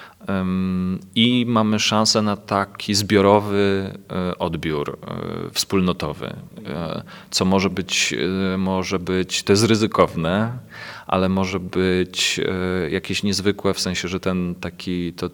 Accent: native